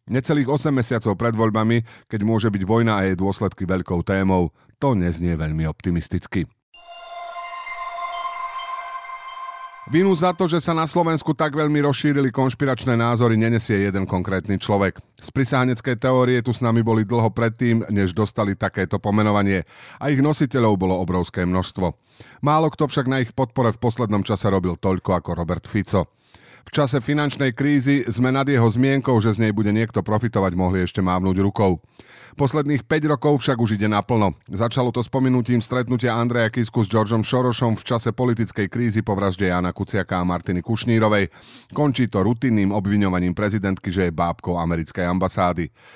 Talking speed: 160 wpm